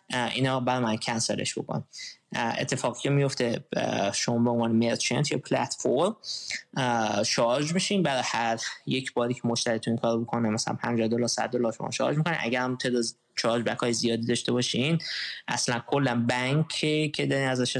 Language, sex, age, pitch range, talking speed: Persian, male, 20-39, 120-135 Hz, 170 wpm